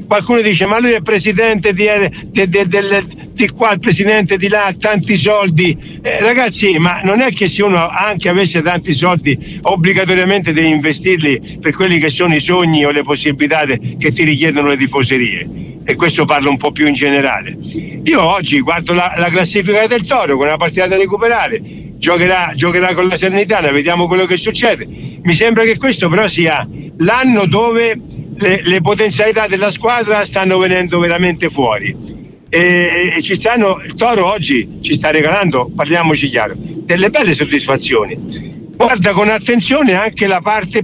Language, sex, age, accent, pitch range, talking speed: Italian, male, 60-79, native, 155-205 Hz, 170 wpm